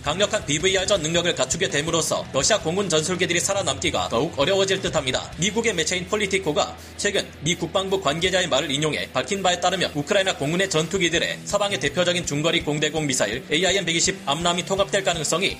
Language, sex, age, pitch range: Korean, male, 30-49, 155-195 Hz